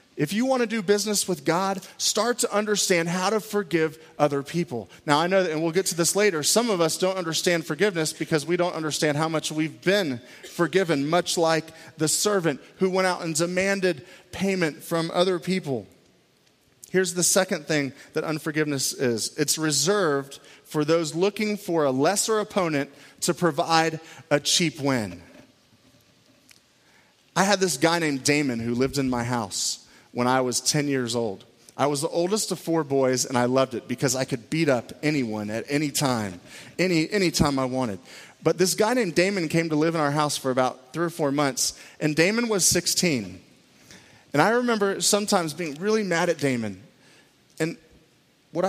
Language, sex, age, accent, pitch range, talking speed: English, male, 30-49, American, 140-185 Hz, 180 wpm